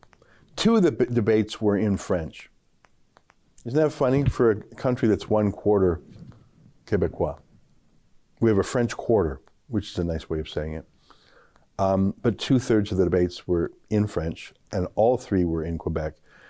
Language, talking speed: English, 165 wpm